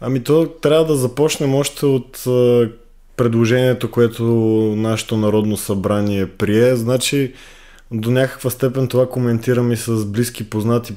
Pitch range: 105-120 Hz